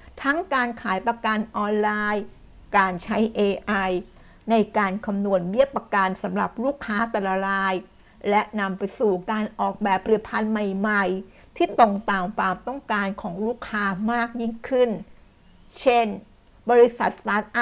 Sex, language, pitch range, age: female, Thai, 195-230 Hz, 60-79